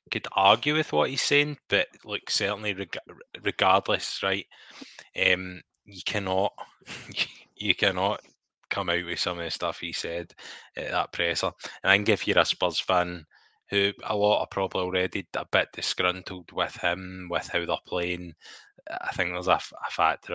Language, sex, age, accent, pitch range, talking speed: English, male, 10-29, British, 90-100 Hz, 175 wpm